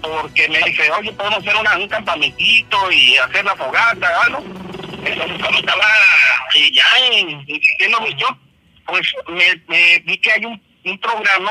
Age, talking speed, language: 50-69, 160 wpm, Spanish